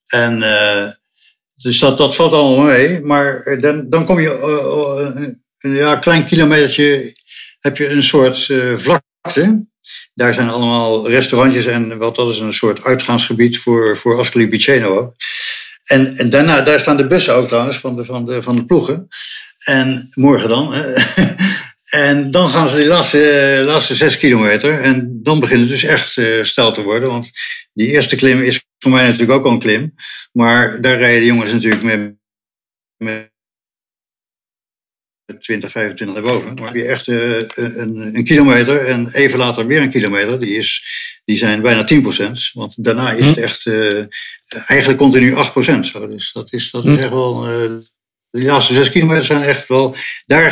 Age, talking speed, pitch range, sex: 60-79, 180 wpm, 115-140 Hz, male